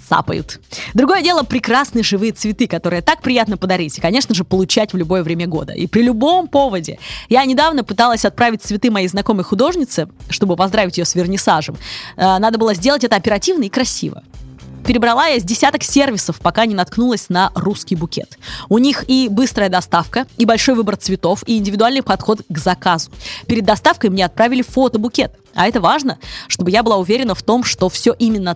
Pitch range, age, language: 185-260 Hz, 20-39, Russian